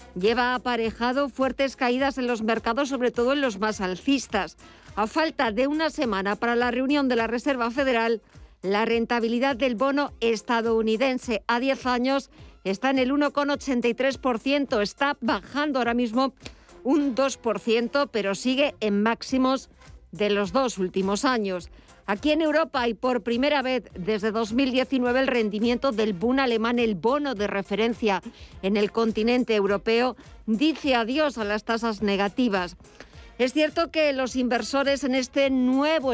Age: 50-69